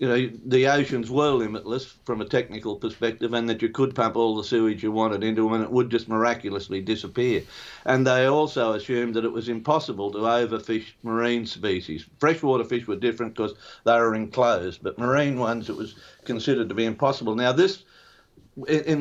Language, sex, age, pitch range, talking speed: English, male, 50-69, 110-130 Hz, 190 wpm